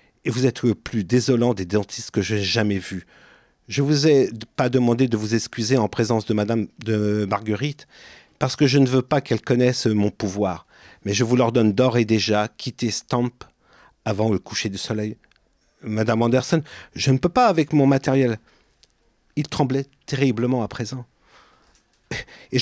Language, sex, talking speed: French, male, 180 wpm